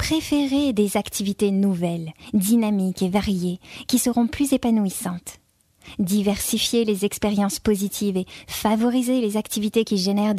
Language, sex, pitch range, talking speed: French, female, 185-220 Hz, 120 wpm